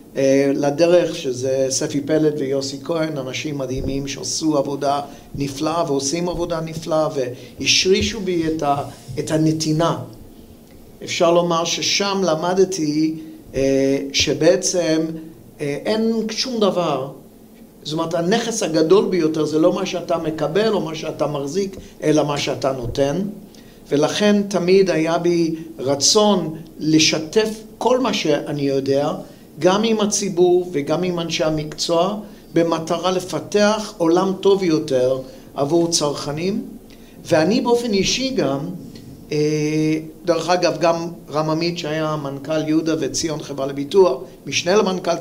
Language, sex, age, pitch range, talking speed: Hebrew, male, 50-69, 145-180 Hz, 115 wpm